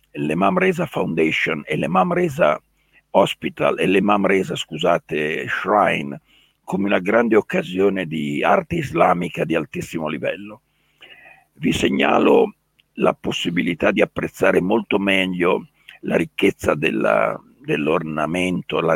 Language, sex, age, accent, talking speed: Italian, male, 60-79, native, 110 wpm